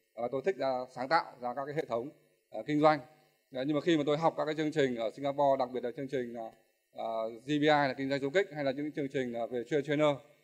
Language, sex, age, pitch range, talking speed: Vietnamese, male, 20-39, 125-150 Hz, 255 wpm